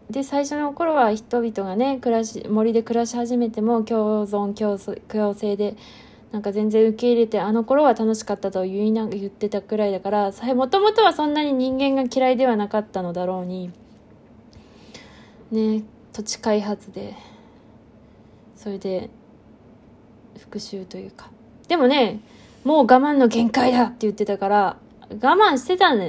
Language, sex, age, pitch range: Japanese, female, 20-39, 195-245 Hz